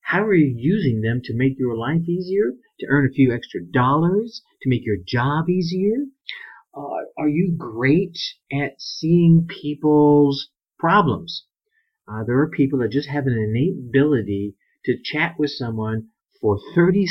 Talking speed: 160 wpm